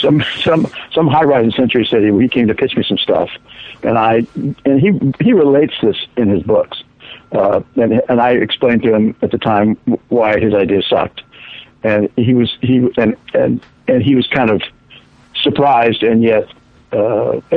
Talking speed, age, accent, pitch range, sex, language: 185 wpm, 60-79, American, 115-145 Hz, male, English